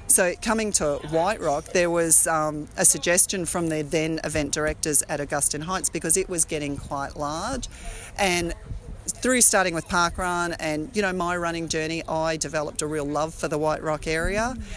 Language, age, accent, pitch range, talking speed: English, 40-59, Australian, 155-195 Hz, 185 wpm